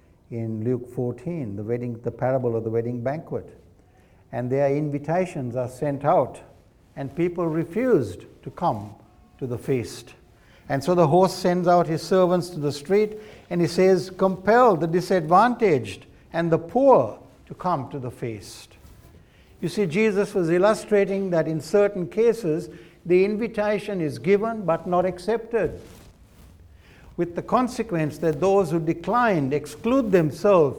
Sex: male